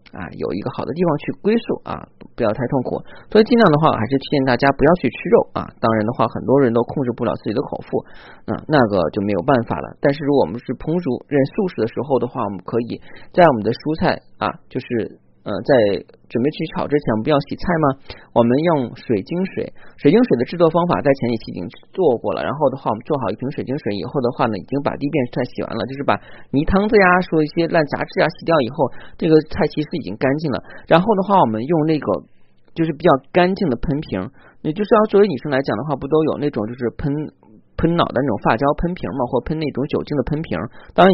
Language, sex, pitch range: Chinese, male, 120-160 Hz